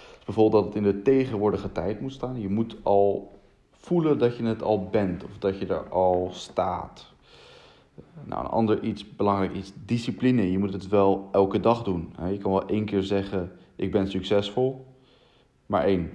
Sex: male